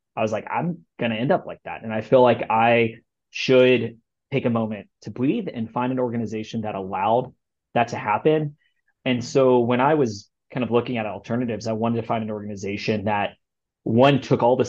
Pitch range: 110-125 Hz